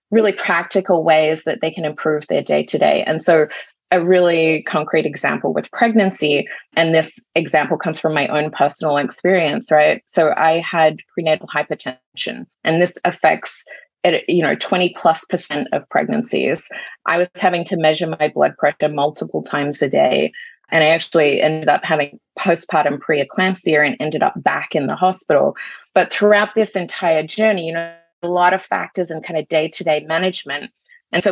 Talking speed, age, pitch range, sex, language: 170 wpm, 20-39, 155-190 Hz, female, English